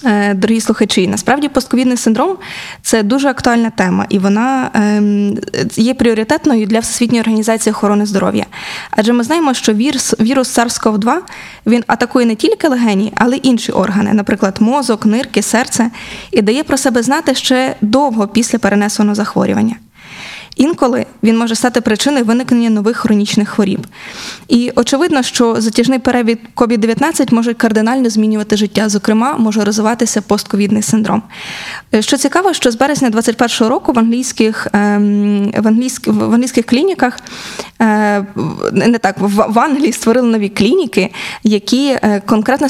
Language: Ukrainian